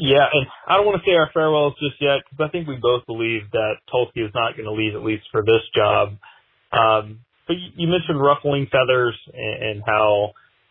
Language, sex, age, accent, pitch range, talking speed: English, male, 30-49, American, 105-135 Hz, 205 wpm